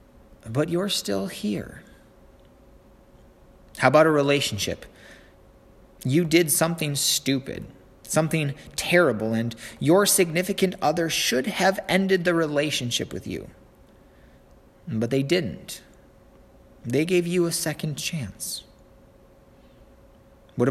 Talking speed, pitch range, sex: 100 wpm, 120-170 Hz, male